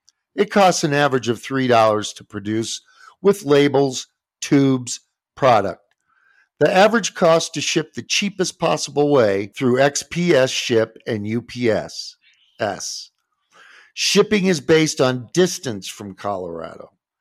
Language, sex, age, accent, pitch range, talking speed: English, male, 50-69, American, 115-175 Hz, 115 wpm